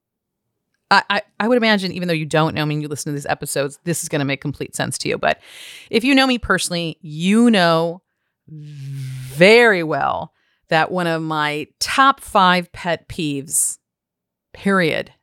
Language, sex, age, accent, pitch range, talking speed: English, female, 40-59, American, 150-195 Hz, 175 wpm